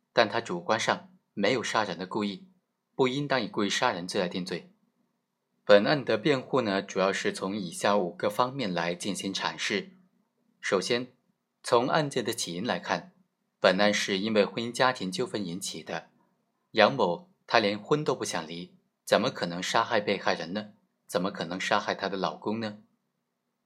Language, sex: Chinese, male